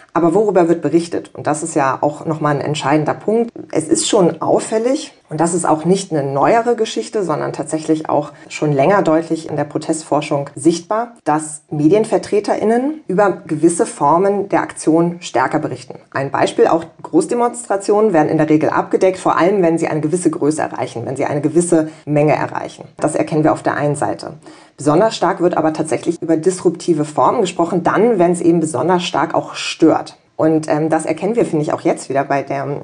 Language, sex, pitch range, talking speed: German, female, 150-180 Hz, 185 wpm